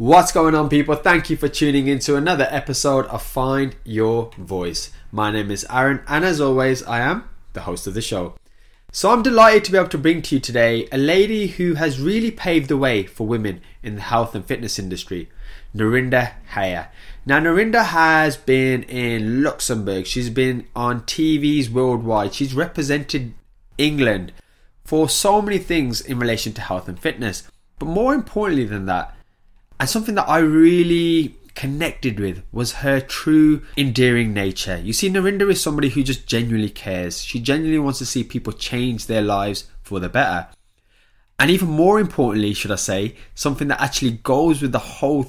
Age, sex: 20-39, male